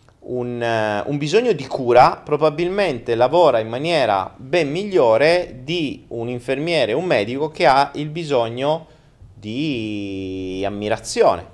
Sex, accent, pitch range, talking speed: male, native, 110-165 Hz, 115 wpm